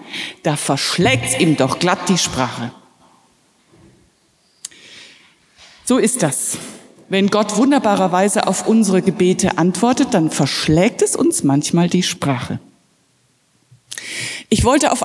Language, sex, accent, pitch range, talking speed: German, female, German, 160-230 Hz, 110 wpm